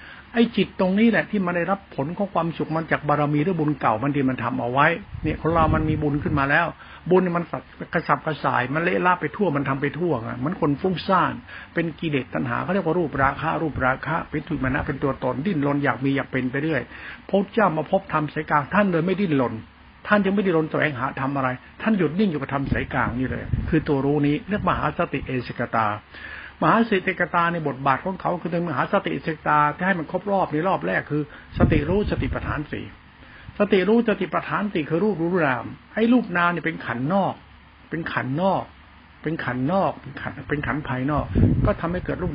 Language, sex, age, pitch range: Thai, male, 60-79, 135-175 Hz